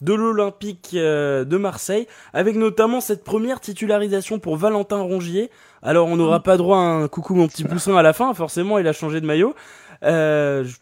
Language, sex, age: French, male, 20-39